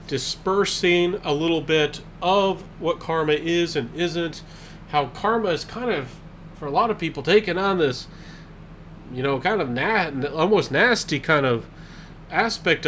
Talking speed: 155 wpm